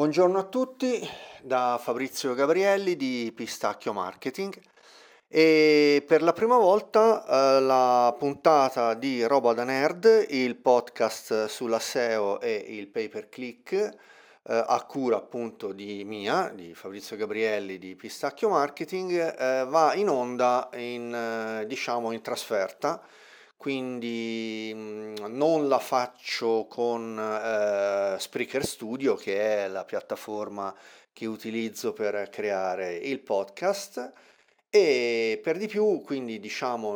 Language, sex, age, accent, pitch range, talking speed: Italian, male, 40-59, native, 110-150 Hz, 120 wpm